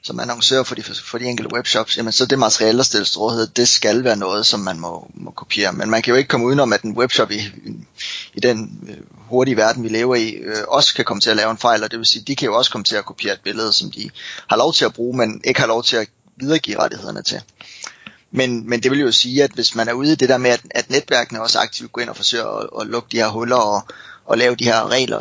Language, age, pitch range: Danish, 20-39, 115-130 Hz